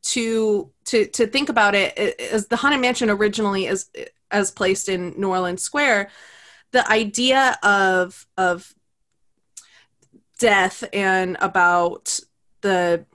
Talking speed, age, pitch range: 120 wpm, 20-39, 185-220 Hz